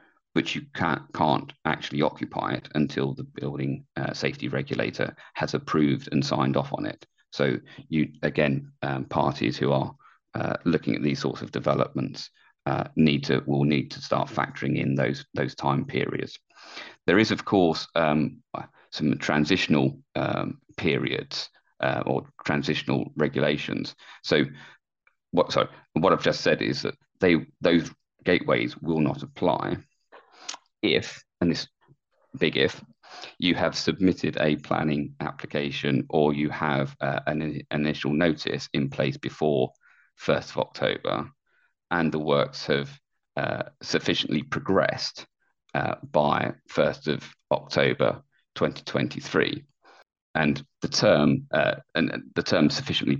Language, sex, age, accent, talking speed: English, male, 40-59, British, 135 wpm